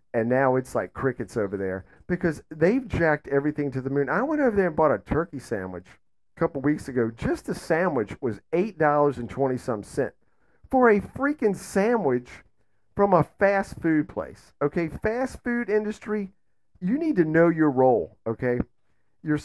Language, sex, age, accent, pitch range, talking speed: English, male, 50-69, American, 115-185 Hz, 175 wpm